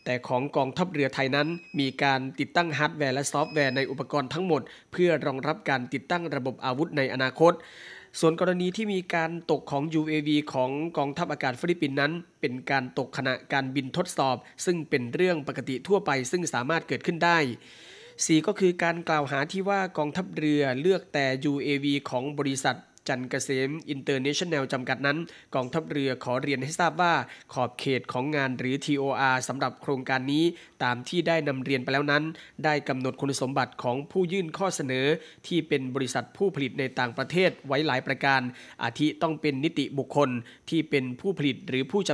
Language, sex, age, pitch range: Thai, male, 20-39, 130-155 Hz